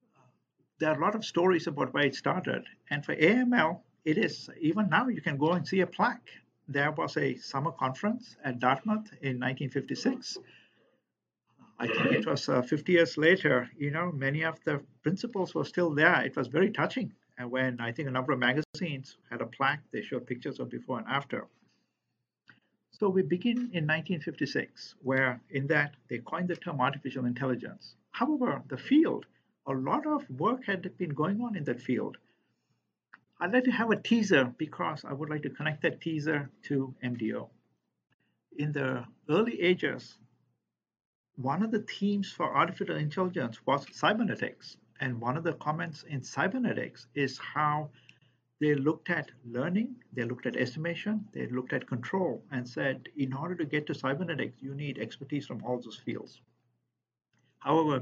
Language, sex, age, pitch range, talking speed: English, male, 50-69, 135-185 Hz, 170 wpm